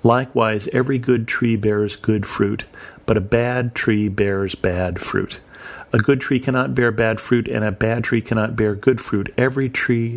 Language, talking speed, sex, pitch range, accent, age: English, 185 wpm, male, 105-125 Hz, American, 40-59